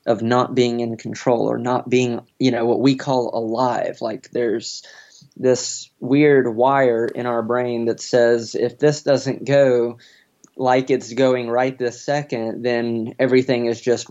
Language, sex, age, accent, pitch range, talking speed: English, male, 20-39, American, 120-140 Hz, 160 wpm